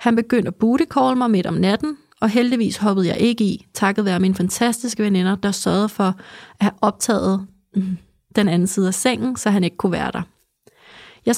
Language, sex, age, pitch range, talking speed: Danish, female, 30-49, 190-230 Hz, 195 wpm